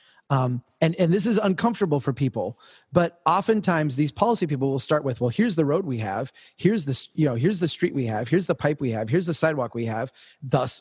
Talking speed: 235 wpm